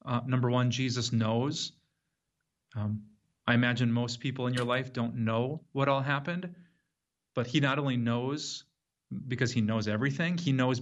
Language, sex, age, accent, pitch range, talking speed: English, male, 30-49, American, 115-135 Hz, 160 wpm